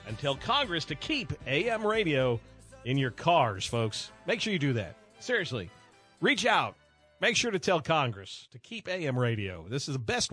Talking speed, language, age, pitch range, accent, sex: 185 wpm, English, 50-69, 125-165 Hz, American, male